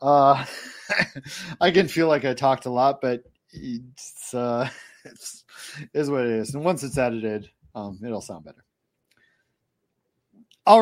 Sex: male